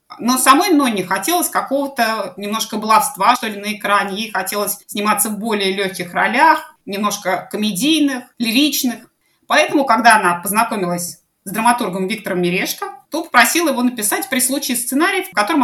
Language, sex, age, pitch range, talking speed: Russian, female, 20-39, 190-265 Hz, 145 wpm